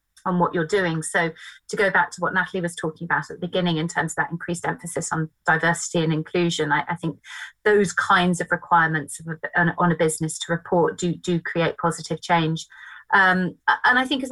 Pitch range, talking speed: 165-185 Hz, 215 wpm